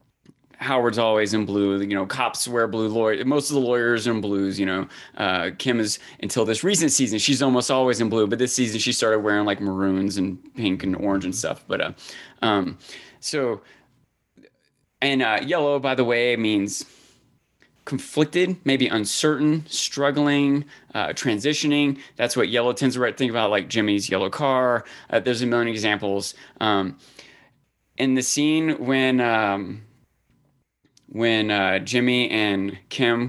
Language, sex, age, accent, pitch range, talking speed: English, male, 30-49, American, 105-130 Hz, 160 wpm